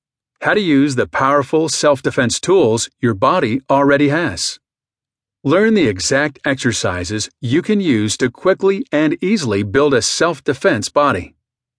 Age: 50-69